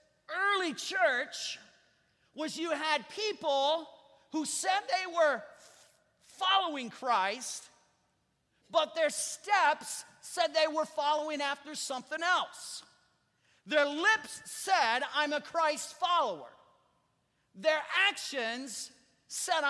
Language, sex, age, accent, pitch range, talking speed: English, male, 40-59, American, 270-330 Hz, 95 wpm